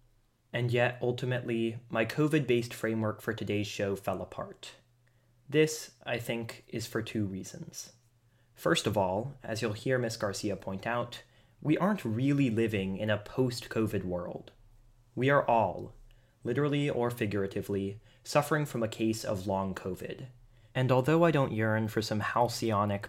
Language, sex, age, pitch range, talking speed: English, male, 20-39, 110-130 Hz, 150 wpm